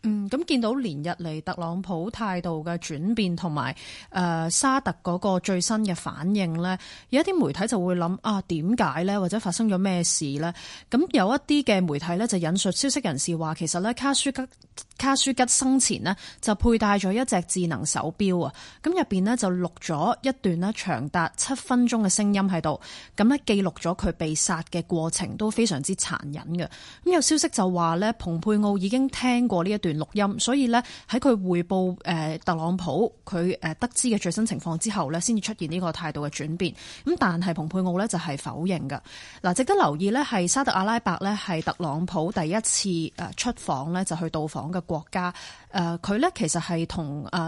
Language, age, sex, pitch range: Chinese, 20-39, female, 170-230 Hz